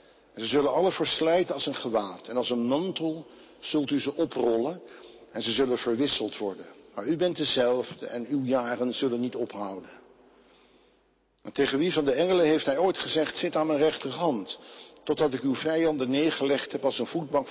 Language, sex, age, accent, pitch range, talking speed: Dutch, male, 60-79, Dutch, 120-150 Hz, 185 wpm